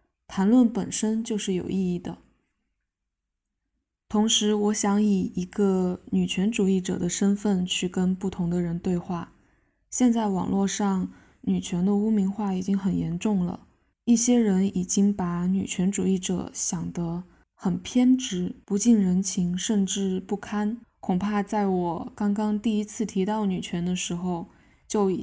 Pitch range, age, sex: 180-210 Hz, 10-29, female